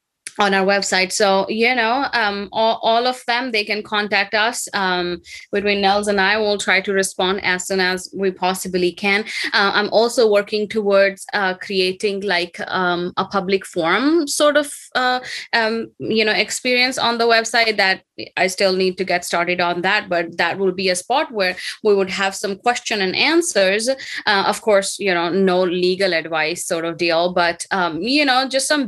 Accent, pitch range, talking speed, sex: Indian, 180-215 Hz, 190 wpm, female